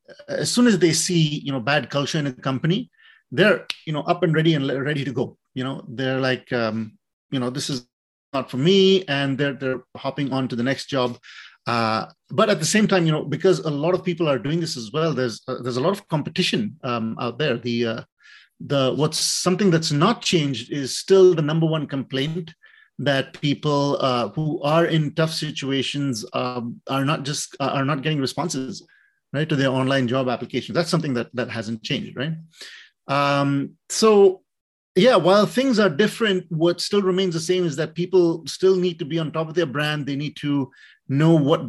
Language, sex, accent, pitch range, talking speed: English, male, Indian, 130-170 Hz, 205 wpm